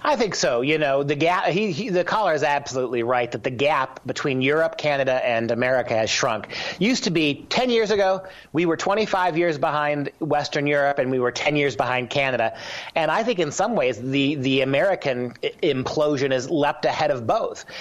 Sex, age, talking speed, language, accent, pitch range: male, 40-59, 200 wpm, English, American, 130-165 Hz